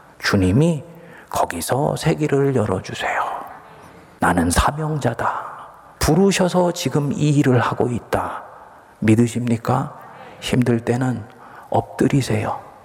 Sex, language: male, Korean